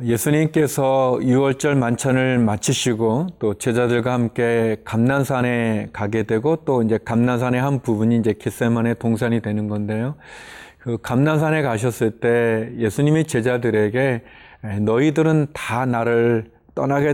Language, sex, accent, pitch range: Korean, male, native, 115-140 Hz